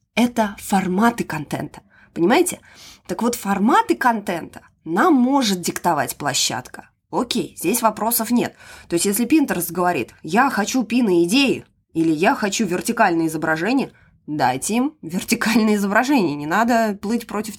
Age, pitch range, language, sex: 20-39, 175-245 Hz, Russian, female